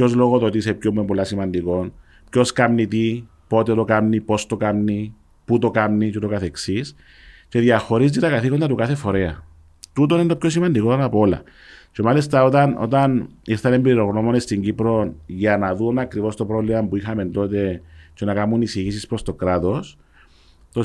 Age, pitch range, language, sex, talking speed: 40-59, 100-135 Hz, Greek, male, 175 wpm